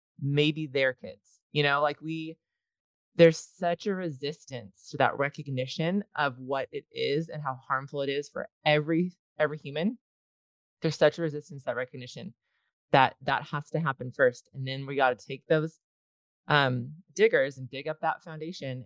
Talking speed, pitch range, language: 170 wpm, 130-165 Hz, English